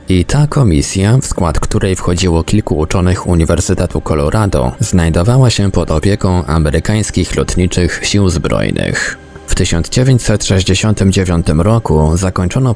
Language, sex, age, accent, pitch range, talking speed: Polish, male, 20-39, native, 85-110 Hz, 110 wpm